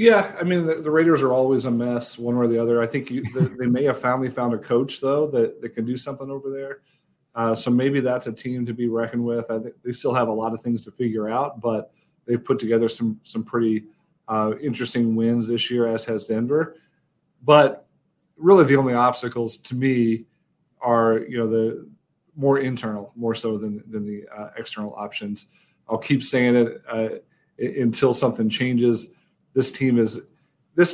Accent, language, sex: American, English, male